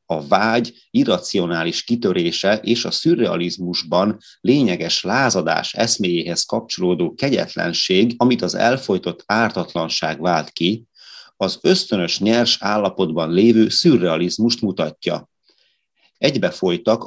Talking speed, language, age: 90 wpm, Hungarian, 30-49